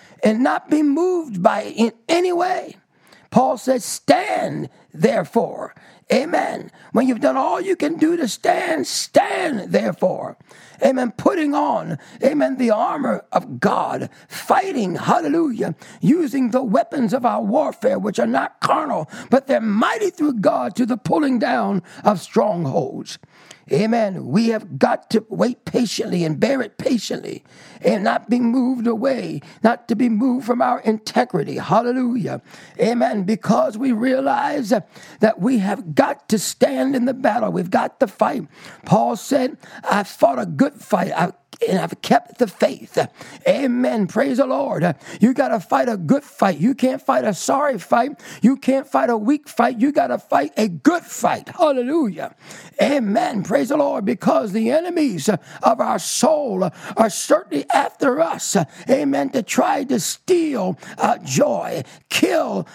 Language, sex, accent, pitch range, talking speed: English, male, American, 220-285 Hz, 155 wpm